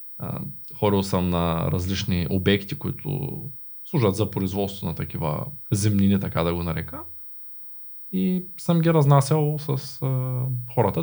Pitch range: 95-130 Hz